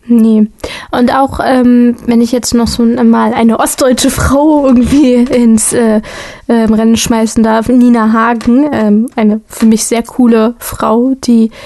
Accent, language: German, German